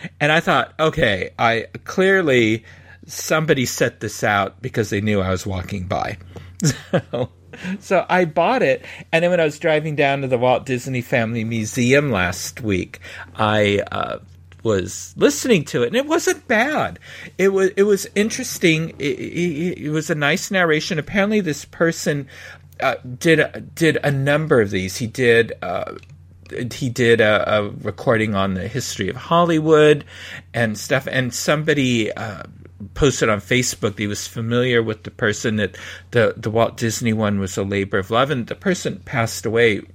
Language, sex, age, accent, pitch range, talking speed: English, male, 50-69, American, 100-160 Hz, 170 wpm